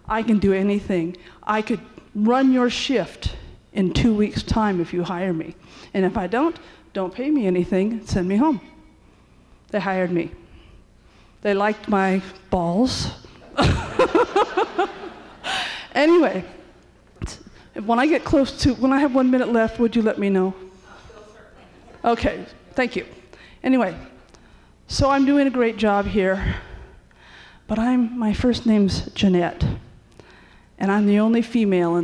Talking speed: 140 wpm